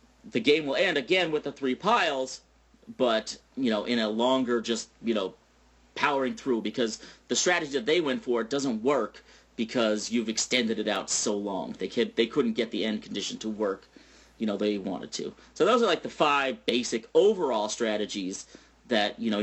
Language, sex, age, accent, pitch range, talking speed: English, male, 40-59, American, 115-155 Hz, 195 wpm